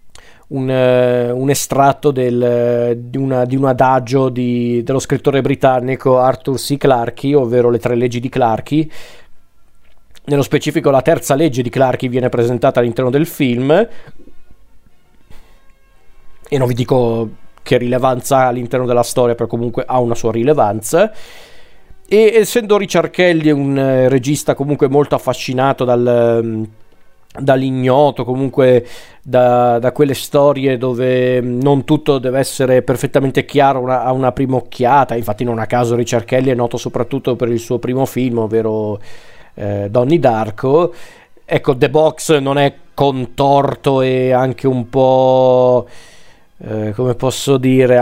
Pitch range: 120-140 Hz